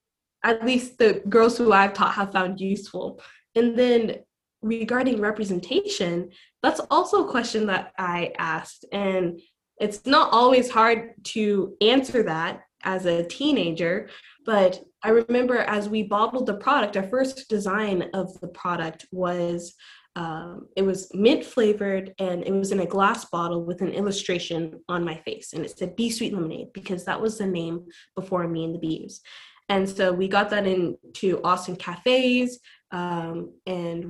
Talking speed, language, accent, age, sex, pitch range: 160 wpm, English, American, 10-29, female, 180-225 Hz